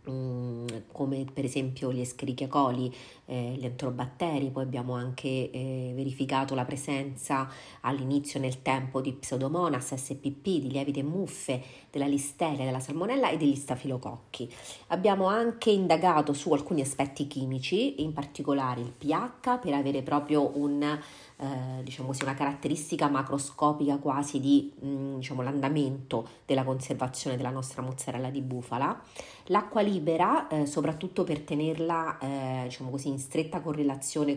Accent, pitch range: native, 130-150 Hz